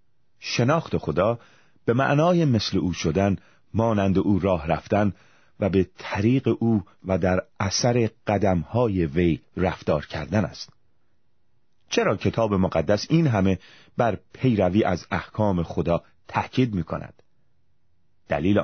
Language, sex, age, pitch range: Persian, male, 30-49, 85-110 Hz